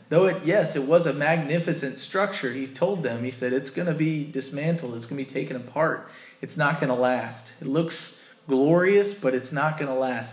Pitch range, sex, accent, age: 130-175 Hz, male, American, 30-49